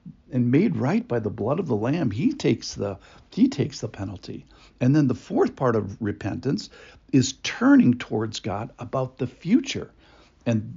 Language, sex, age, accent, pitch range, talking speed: English, male, 60-79, American, 110-135 Hz, 175 wpm